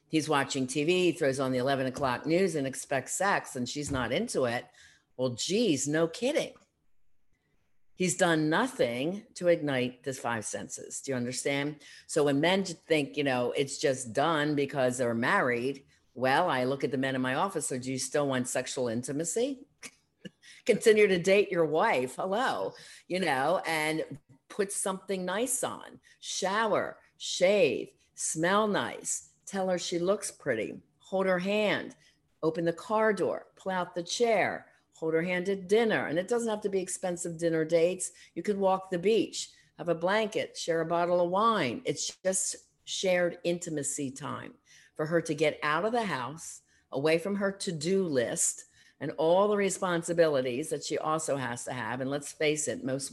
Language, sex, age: English, female, 50-69